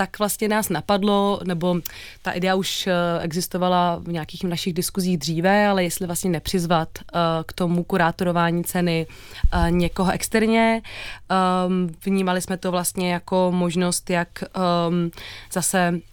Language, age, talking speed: Czech, 20-39, 120 wpm